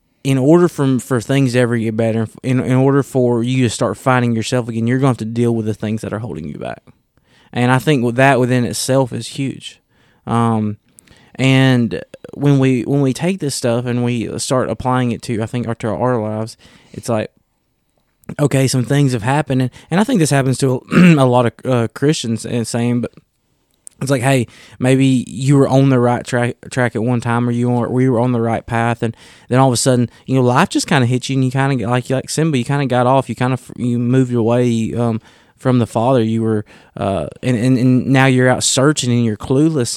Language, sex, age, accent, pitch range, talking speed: English, male, 20-39, American, 115-135 Hz, 235 wpm